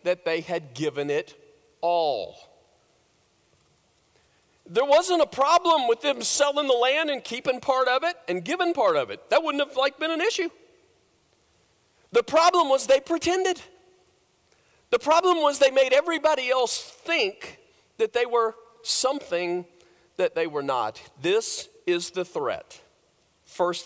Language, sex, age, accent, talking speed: English, male, 40-59, American, 145 wpm